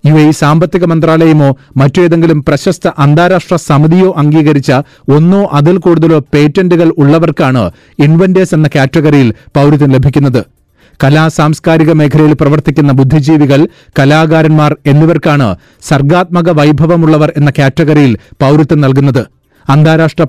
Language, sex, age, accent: Malayalam, male, 30-49, native